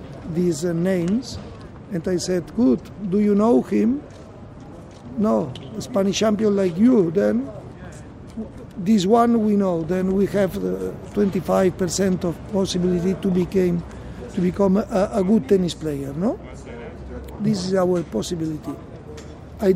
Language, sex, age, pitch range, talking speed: English, male, 60-79, 175-200 Hz, 135 wpm